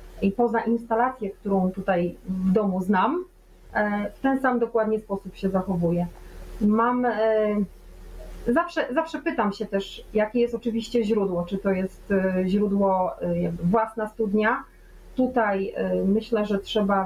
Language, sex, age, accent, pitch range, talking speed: Polish, female, 30-49, native, 190-225 Hz, 120 wpm